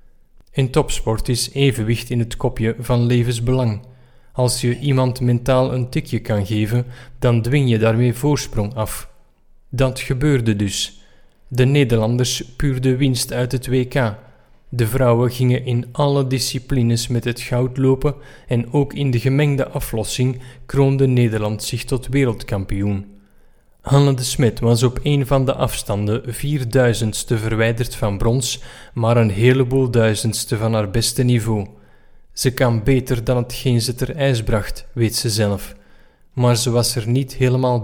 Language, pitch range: Dutch, 115-130 Hz